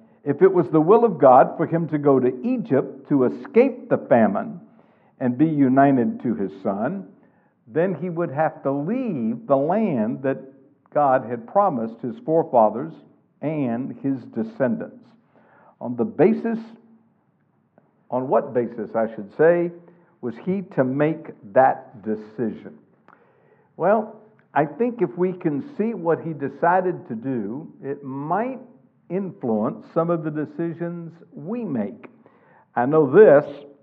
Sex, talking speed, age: male, 140 wpm, 60-79